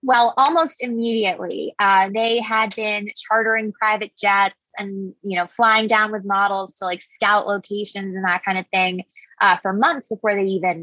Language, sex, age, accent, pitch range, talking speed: English, female, 20-39, American, 195-235 Hz, 175 wpm